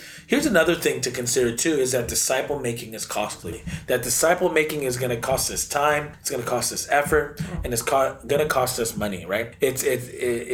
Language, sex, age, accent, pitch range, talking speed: English, male, 30-49, American, 120-165 Hz, 220 wpm